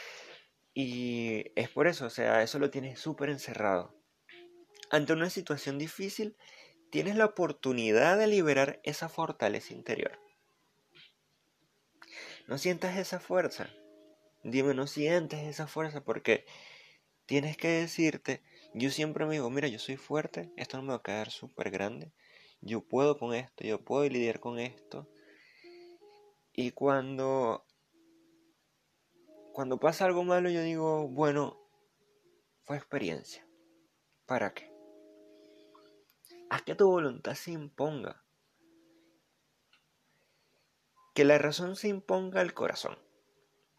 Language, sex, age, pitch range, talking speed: Spanish, male, 30-49, 130-200 Hz, 120 wpm